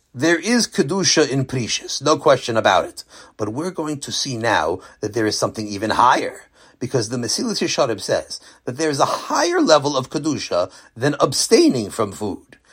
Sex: male